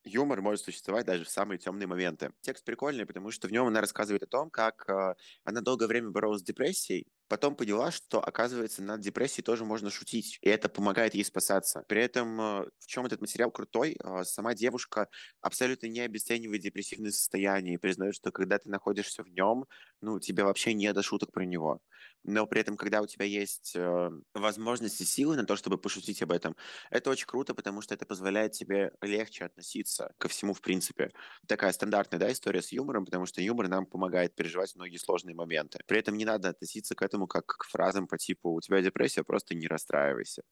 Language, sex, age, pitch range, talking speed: Russian, male, 20-39, 95-115 Hz, 195 wpm